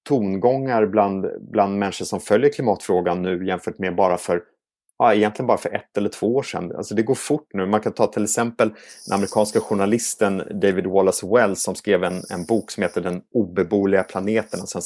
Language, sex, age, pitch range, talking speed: Swedish, male, 30-49, 95-110 Hz, 200 wpm